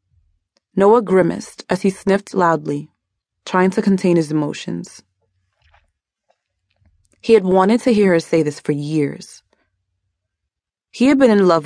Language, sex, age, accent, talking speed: English, female, 20-39, American, 135 wpm